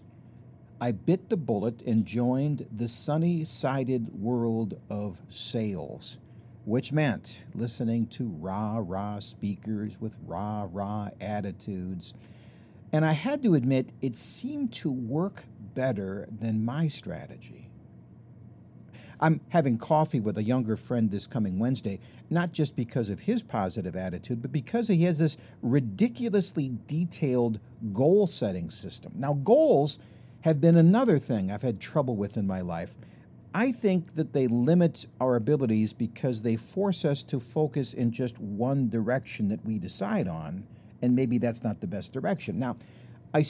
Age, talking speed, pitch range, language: 50-69, 140 wpm, 110-155 Hz, English